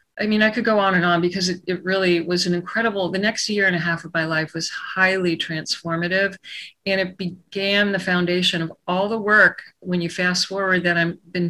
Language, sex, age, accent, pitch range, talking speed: English, female, 40-59, American, 180-220 Hz, 225 wpm